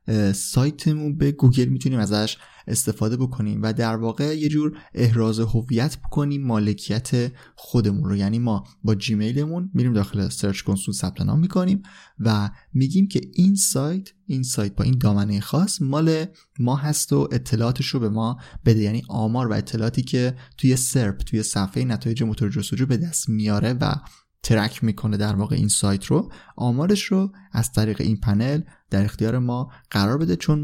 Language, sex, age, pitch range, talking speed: Persian, male, 20-39, 110-145 Hz, 165 wpm